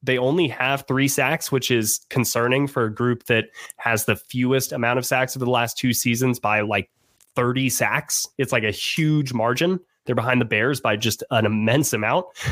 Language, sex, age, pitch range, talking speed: English, male, 20-39, 115-140 Hz, 195 wpm